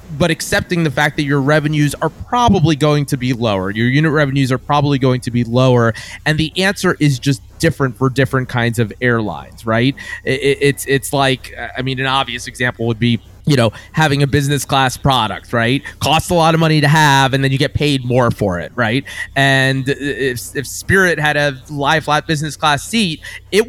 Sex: male